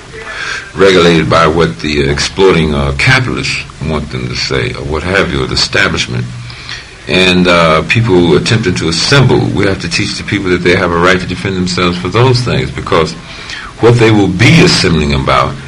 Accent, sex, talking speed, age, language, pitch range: American, male, 185 wpm, 50-69, English, 70-105 Hz